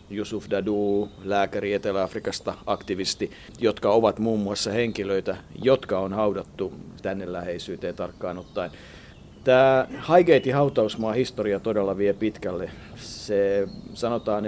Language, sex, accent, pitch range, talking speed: Finnish, male, native, 100-130 Hz, 105 wpm